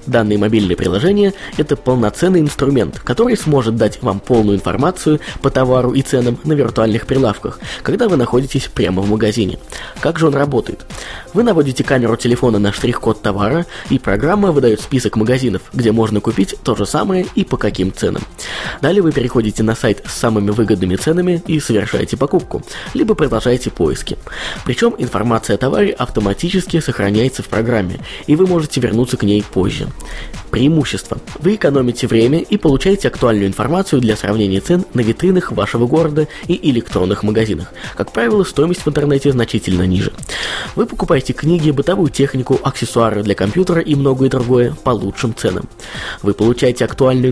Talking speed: 155 wpm